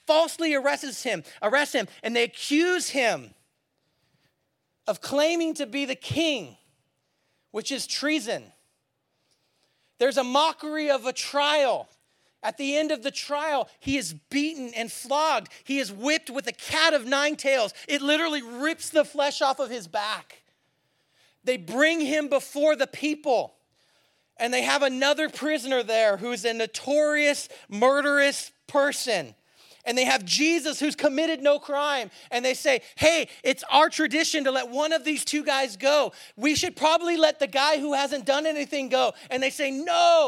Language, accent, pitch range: English, American, 225-300 Hz